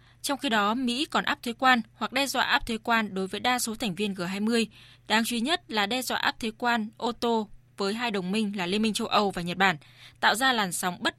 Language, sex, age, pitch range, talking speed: Vietnamese, female, 20-39, 185-240 Hz, 265 wpm